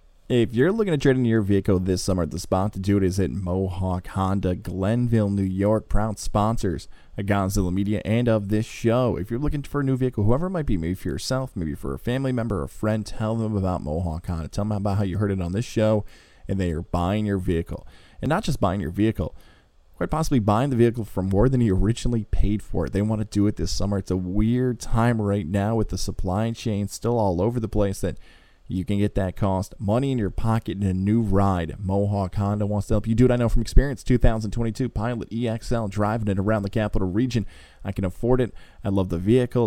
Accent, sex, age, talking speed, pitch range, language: American, male, 20-39, 240 wpm, 95-110 Hz, English